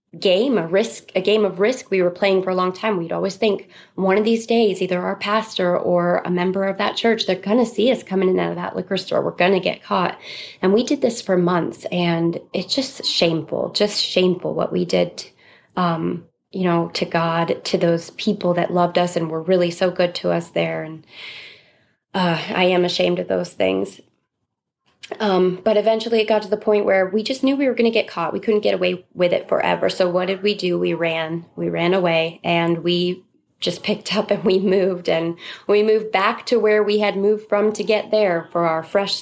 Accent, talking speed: American, 225 wpm